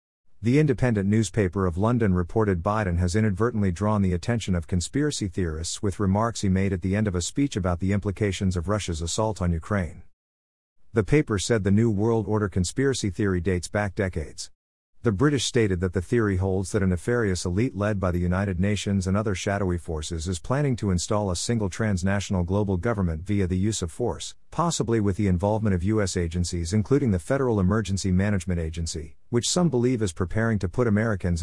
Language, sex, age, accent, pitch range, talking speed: English, male, 50-69, American, 90-115 Hz, 190 wpm